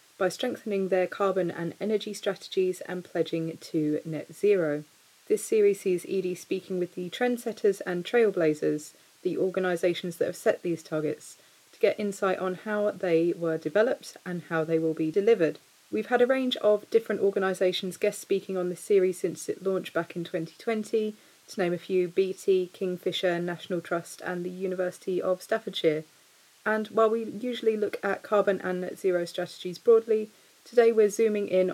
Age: 30-49